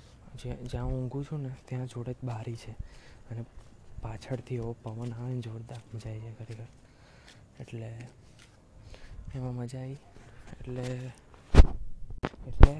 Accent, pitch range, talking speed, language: native, 115-135 Hz, 125 wpm, Gujarati